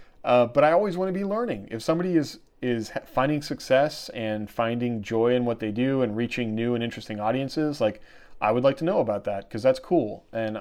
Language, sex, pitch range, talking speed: English, male, 110-130 Hz, 220 wpm